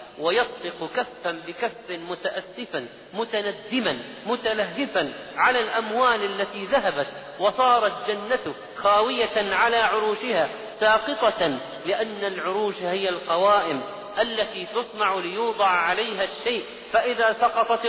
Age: 40-59